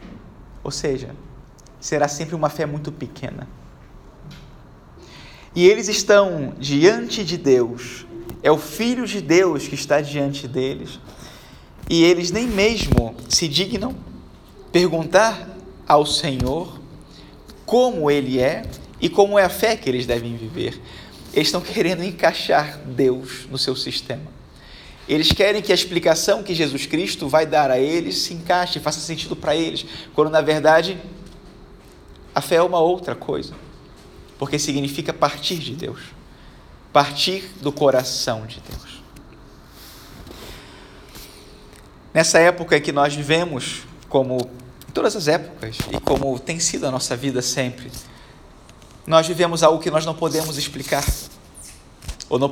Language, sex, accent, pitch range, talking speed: Portuguese, male, Brazilian, 130-170 Hz, 135 wpm